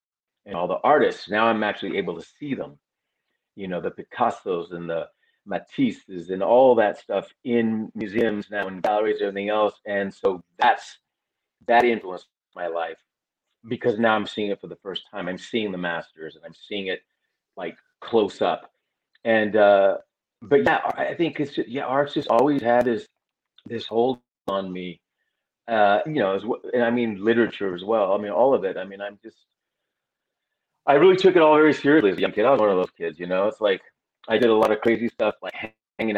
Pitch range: 100-125 Hz